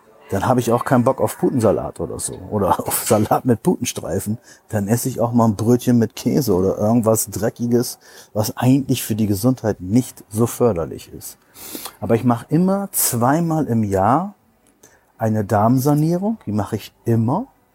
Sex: male